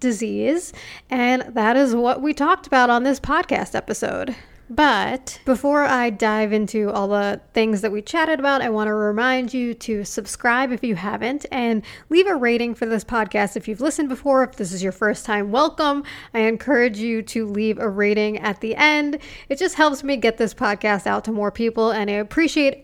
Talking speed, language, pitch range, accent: 200 wpm, English, 215-275 Hz, American